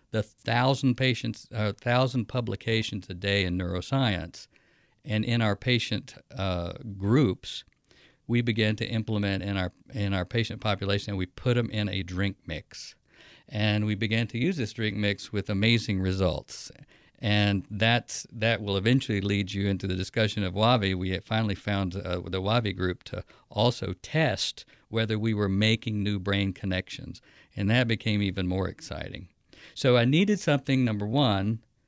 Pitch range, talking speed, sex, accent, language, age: 100-120 Hz, 165 wpm, male, American, English, 50-69